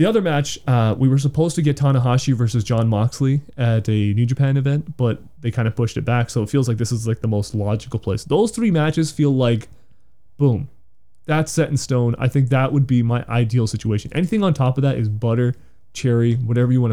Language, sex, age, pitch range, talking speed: English, male, 20-39, 115-135 Hz, 230 wpm